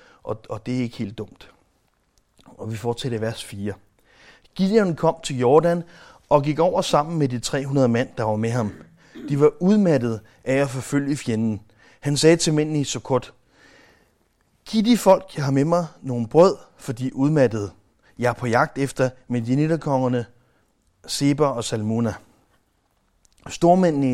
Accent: native